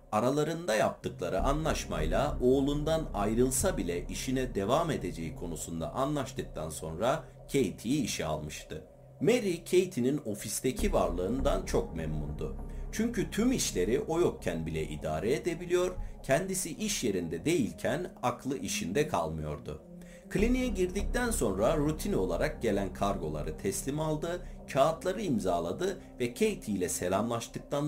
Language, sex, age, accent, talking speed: Turkish, male, 50-69, native, 110 wpm